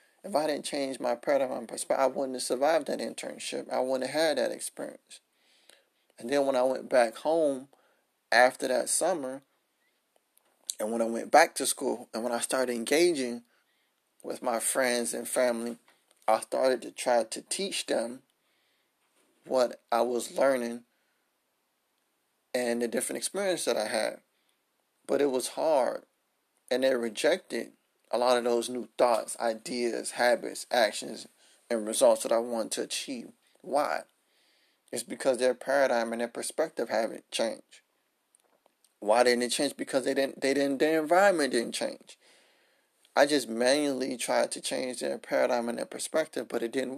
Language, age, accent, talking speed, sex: English, 30-49, American, 160 wpm, male